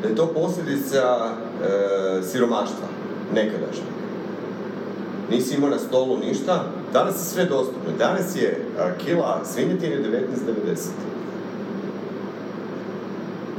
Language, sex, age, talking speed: Croatian, male, 40-59, 100 wpm